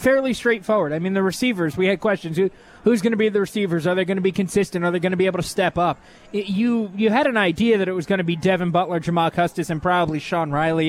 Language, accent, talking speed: English, American, 280 wpm